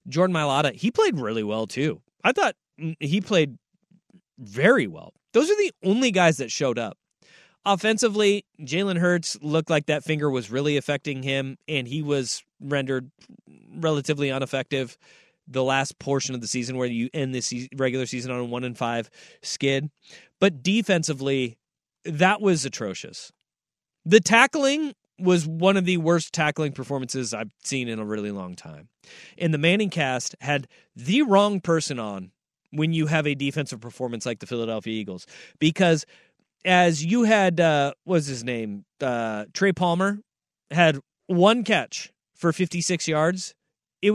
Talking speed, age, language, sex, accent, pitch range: 155 wpm, 20-39, English, male, American, 130-185 Hz